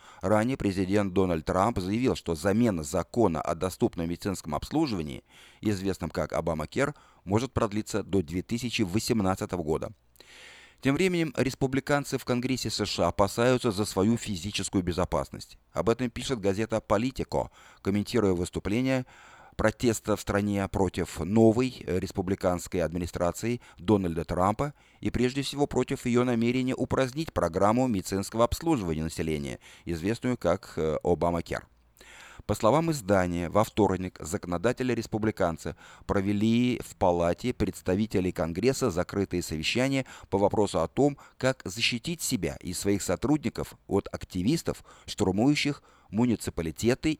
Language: Russian